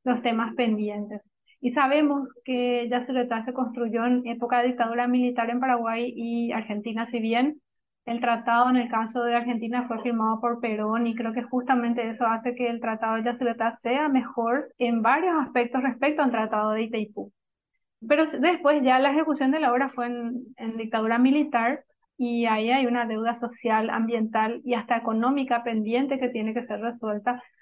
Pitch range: 230-260 Hz